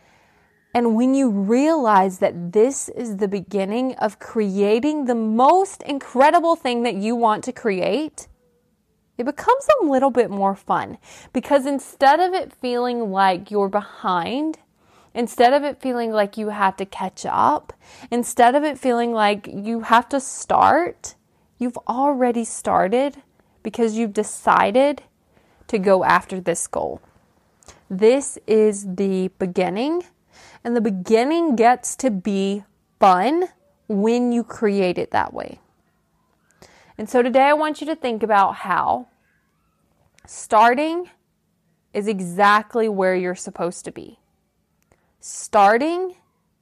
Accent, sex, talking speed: American, female, 130 wpm